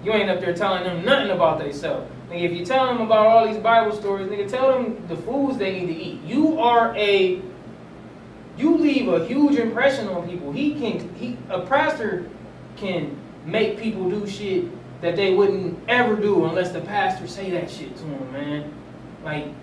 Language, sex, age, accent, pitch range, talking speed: English, male, 20-39, American, 180-275 Hz, 190 wpm